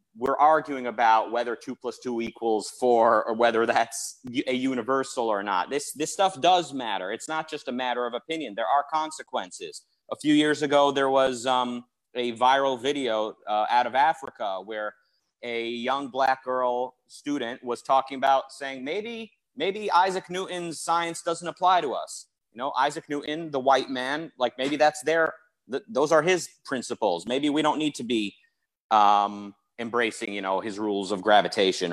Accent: American